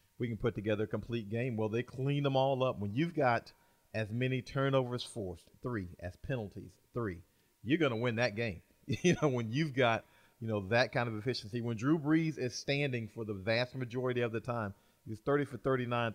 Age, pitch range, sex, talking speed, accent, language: 40-59, 110-130 Hz, male, 210 wpm, American, English